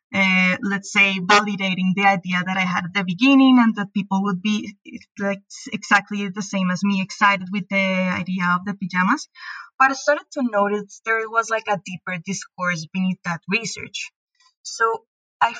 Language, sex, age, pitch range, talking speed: English, female, 20-39, 190-220 Hz, 175 wpm